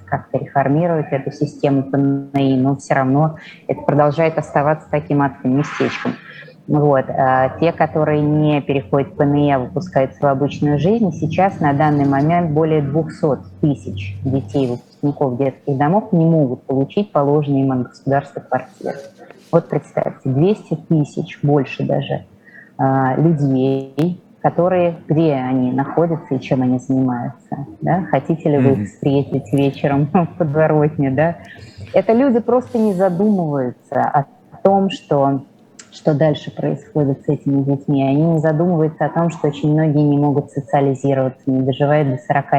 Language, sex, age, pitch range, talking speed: Russian, female, 20-39, 135-160 Hz, 140 wpm